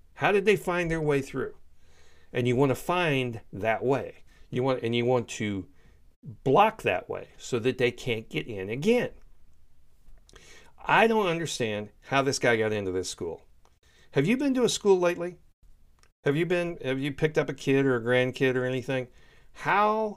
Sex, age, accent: male, 50-69, American